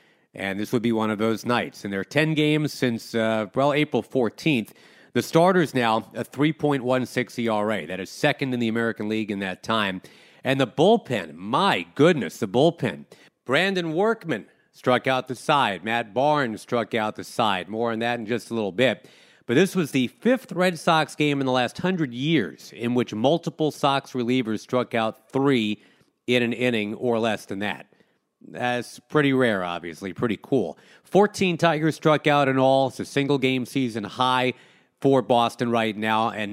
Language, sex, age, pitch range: English, male, 40-59, 110-145 Hz